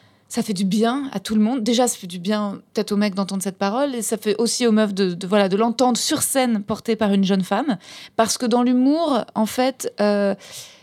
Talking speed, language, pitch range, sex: 245 wpm, French, 195-230 Hz, female